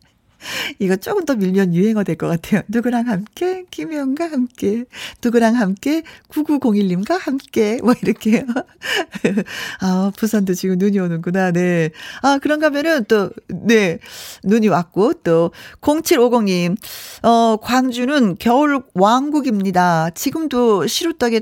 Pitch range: 180-255 Hz